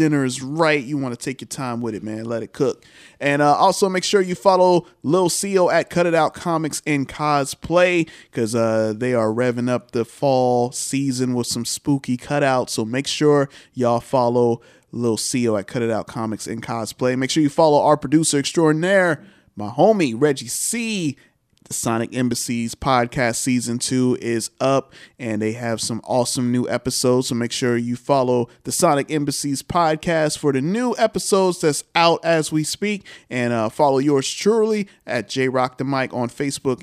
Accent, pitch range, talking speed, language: American, 125-160 Hz, 185 wpm, English